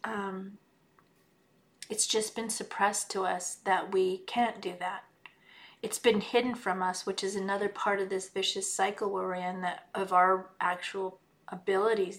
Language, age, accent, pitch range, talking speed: English, 40-59, American, 195-225 Hz, 155 wpm